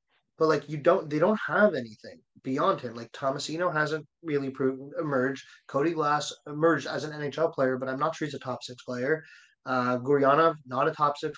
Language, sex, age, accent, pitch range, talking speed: English, male, 30-49, American, 130-150 Hz, 185 wpm